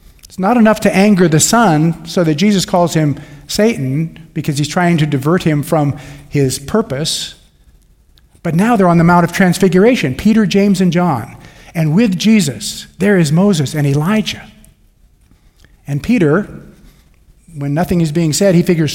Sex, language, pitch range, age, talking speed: male, English, 135-195 Hz, 50-69, 160 wpm